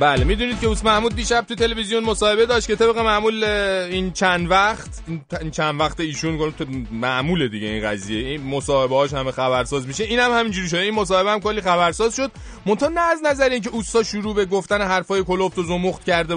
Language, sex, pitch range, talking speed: Persian, male, 140-220 Hz, 200 wpm